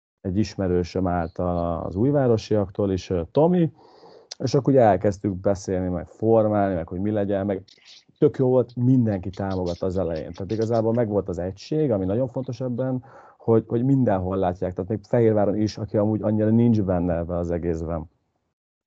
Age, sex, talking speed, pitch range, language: 30-49, male, 160 wpm, 90-110 Hz, Hungarian